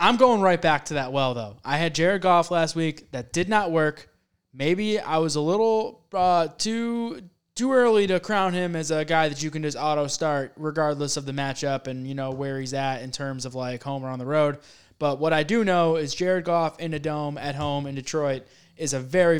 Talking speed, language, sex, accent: 230 wpm, English, male, American